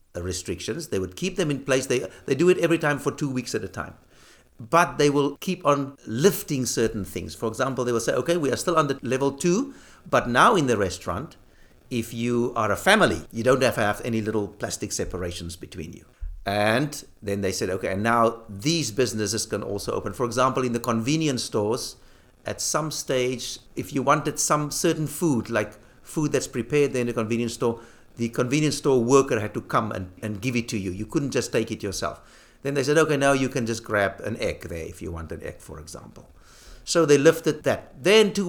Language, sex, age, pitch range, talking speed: English, male, 50-69, 110-150 Hz, 220 wpm